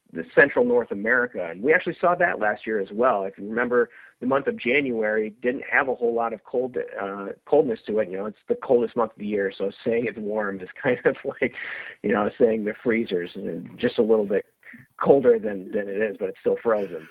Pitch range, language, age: 110-155 Hz, English, 40-59